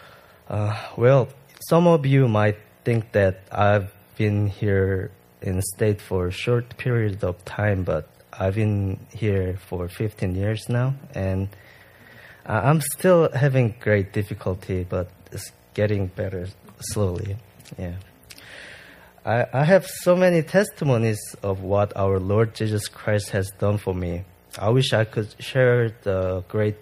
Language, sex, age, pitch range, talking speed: English, male, 20-39, 95-120 Hz, 140 wpm